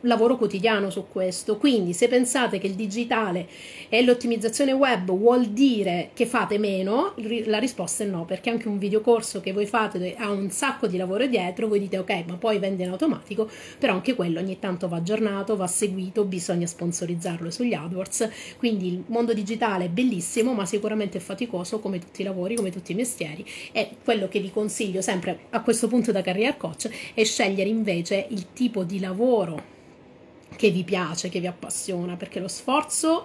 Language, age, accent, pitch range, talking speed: Italian, 30-49, native, 185-230 Hz, 185 wpm